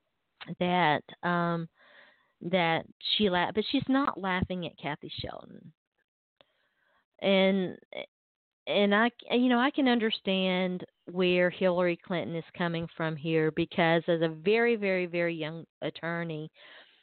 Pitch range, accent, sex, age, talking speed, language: 170-190 Hz, American, female, 40-59, 125 wpm, English